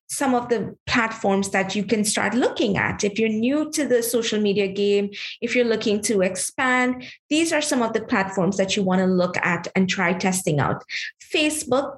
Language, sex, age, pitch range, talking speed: English, female, 20-39, 195-245 Hz, 195 wpm